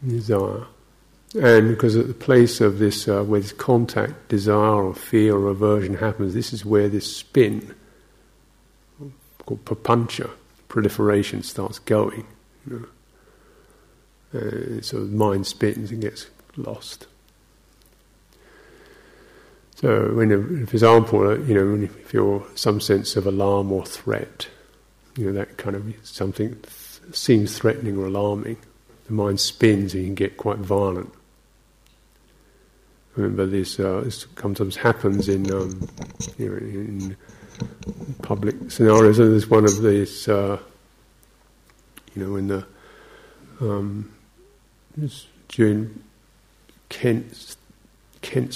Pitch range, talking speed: 100-115 Hz, 125 wpm